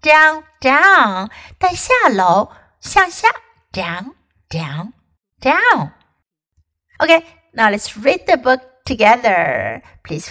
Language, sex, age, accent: Chinese, female, 60-79, American